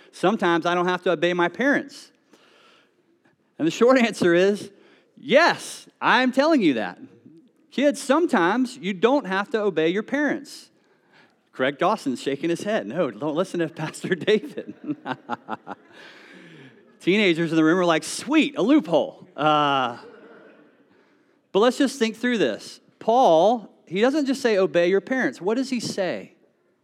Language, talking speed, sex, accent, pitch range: English, 150 wpm, male, American, 155-250 Hz